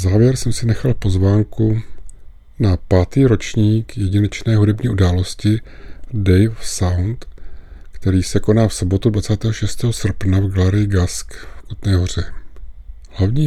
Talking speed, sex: 120 wpm, male